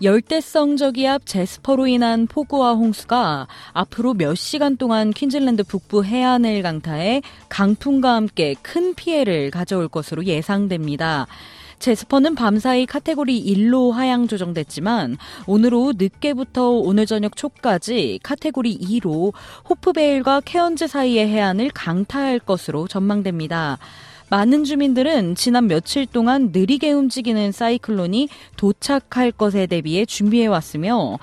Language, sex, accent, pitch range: Korean, female, native, 175-255 Hz